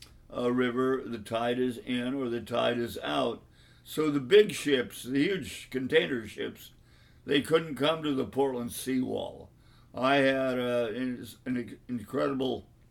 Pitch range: 120-135 Hz